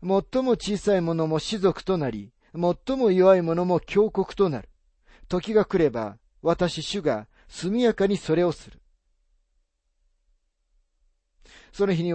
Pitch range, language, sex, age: 150-200 Hz, Japanese, male, 40-59